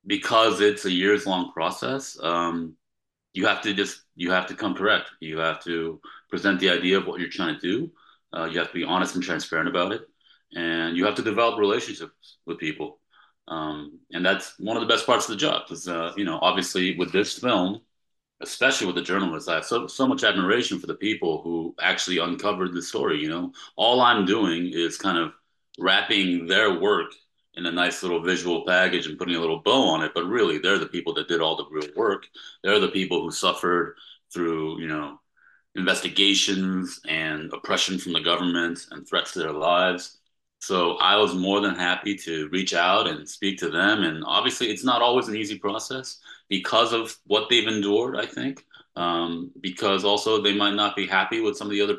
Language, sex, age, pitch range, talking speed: English, male, 30-49, 85-105 Hz, 205 wpm